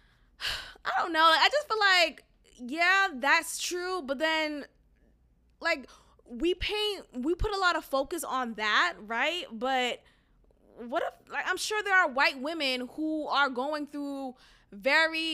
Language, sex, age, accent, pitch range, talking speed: English, female, 20-39, American, 250-320 Hz, 155 wpm